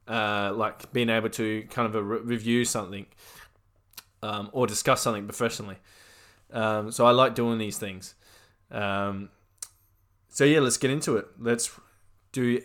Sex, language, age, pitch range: male, English, 20-39, 100-120 Hz